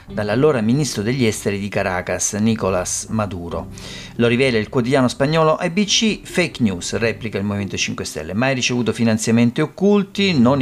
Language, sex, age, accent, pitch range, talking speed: Italian, male, 40-59, native, 105-135 Hz, 145 wpm